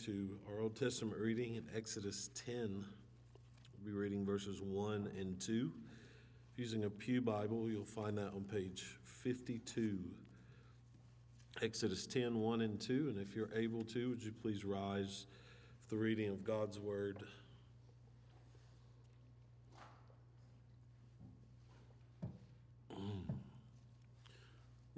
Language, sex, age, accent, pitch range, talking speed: English, male, 50-69, American, 110-125 Hz, 115 wpm